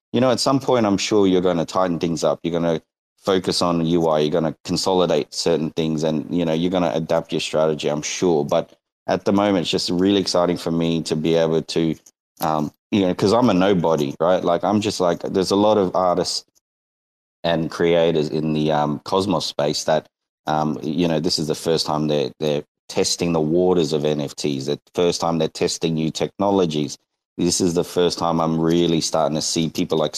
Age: 30-49